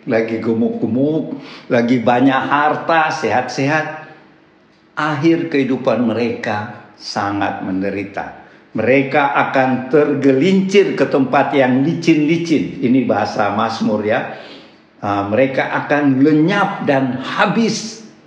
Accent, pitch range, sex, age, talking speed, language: native, 115-165 Hz, male, 60-79, 90 wpm, Indonesian